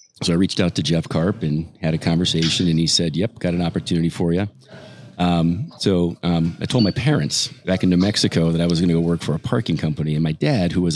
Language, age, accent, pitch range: English, 40-59, American, 85-100 Hz